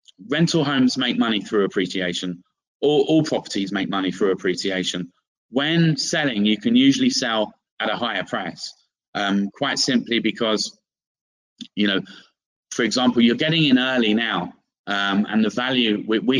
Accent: British